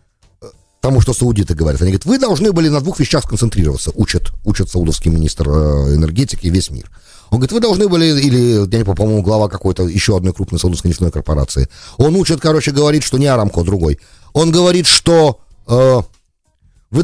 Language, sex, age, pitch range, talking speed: English, male, 40-59, 100-165 Hz, 180 wpm